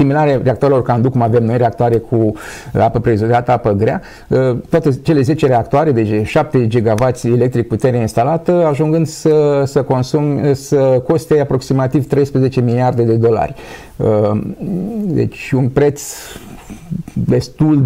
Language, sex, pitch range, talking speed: Romanian, male, 115-150 Hz, 130 wpm